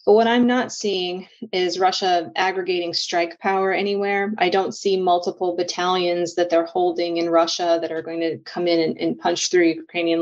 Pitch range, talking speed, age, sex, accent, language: 170-200 Hz, 190 wpm, 30-49, female, American, English